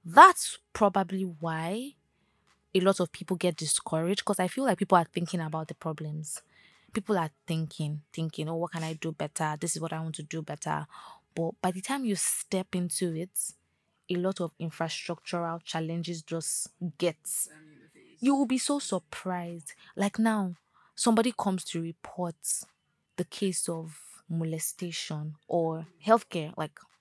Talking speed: 155 wpm